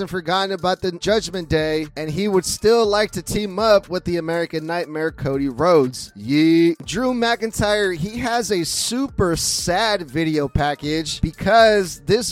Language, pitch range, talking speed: English, 160-205 Hz, 155 wpm